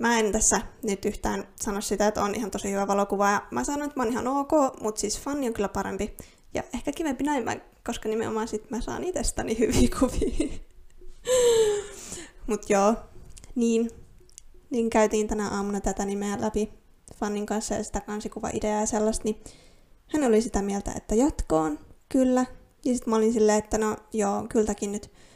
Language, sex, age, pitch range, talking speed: Finnish, female, 20-39, 210-280 Hz, 175 wpm